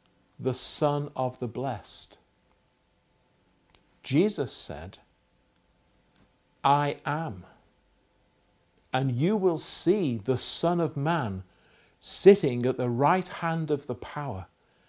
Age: 60-79